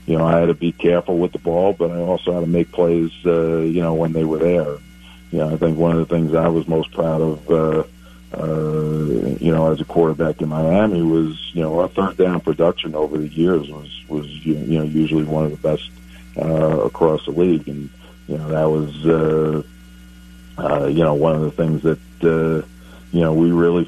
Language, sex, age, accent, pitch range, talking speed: English, male, 50-69, American, 75-85 Hz, 220 wpm